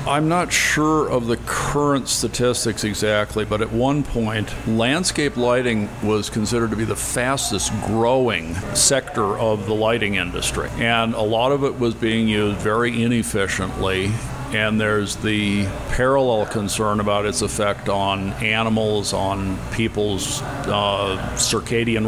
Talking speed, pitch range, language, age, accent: 135 wpm, 105-125 Hz, English, 50-69, American